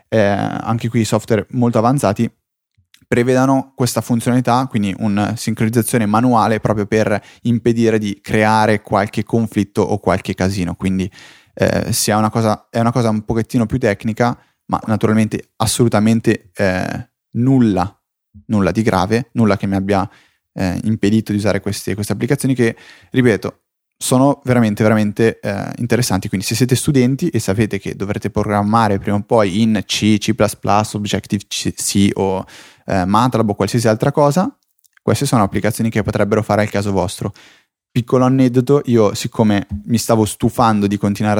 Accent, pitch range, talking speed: native, 100-120 Hz, 150 wpm